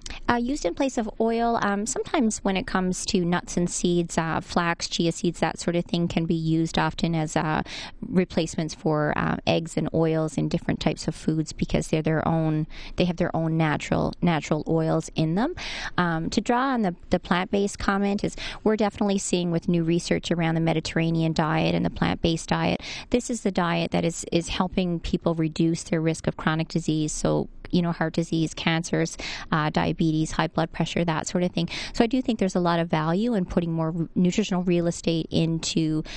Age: 30-49